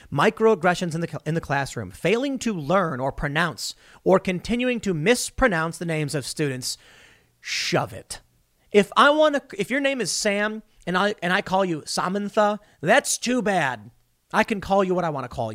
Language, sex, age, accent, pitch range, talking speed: English, male, 30-49, American, 145-210 Hz, 190 wpm